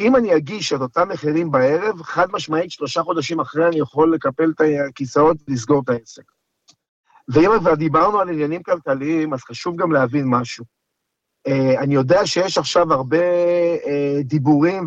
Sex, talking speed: male, 145 wpm